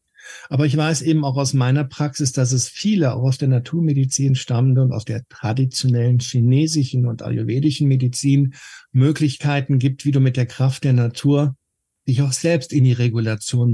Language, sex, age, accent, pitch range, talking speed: German, male, 60-79, German, 125-150 Hz, 170 wpm